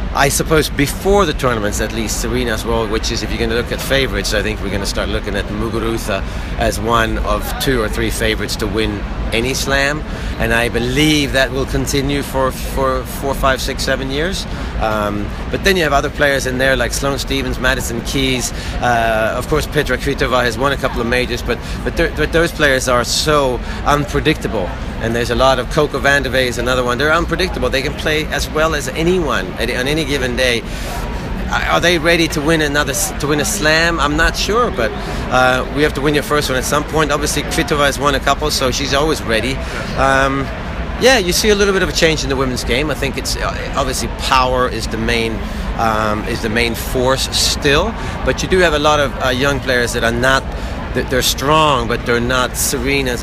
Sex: male